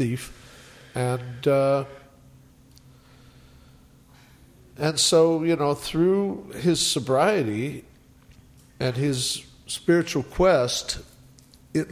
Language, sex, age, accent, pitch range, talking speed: English, male, 50-69, American, 120-140 Hz, 70 wpm